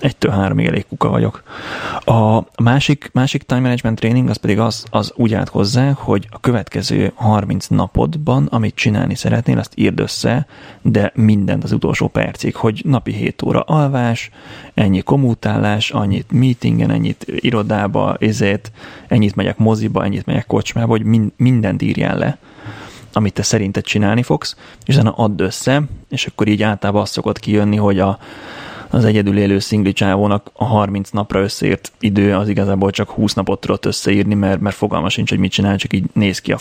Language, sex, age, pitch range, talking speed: Hungarian, male, 30-49, 100-115 Hz, 165 wpm